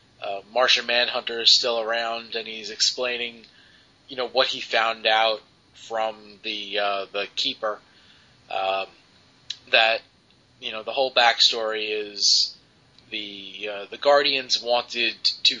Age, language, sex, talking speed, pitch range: 20-39, English, male, 130 wpm, 105-125 Hz